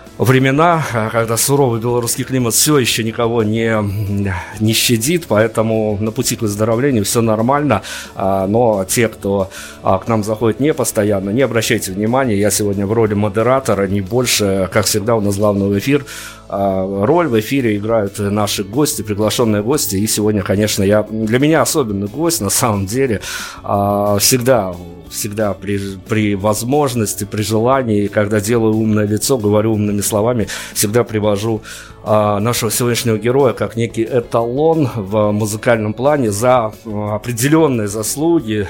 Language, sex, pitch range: Russian, male, 105-120 Hz